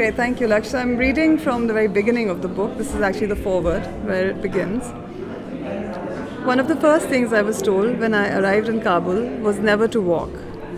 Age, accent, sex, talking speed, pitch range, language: 30-49, Indian, female, 210 wpm, 195-235 Hz, English